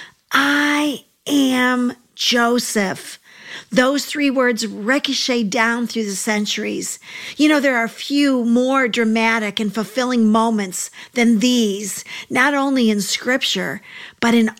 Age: 50-69